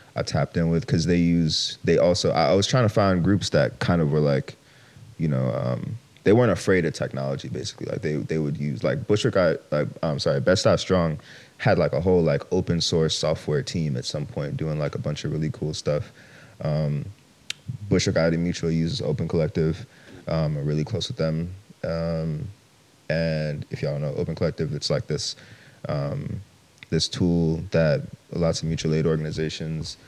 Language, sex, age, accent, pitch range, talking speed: English, male, 30-49, American, 80-100 Hz, 190 wpm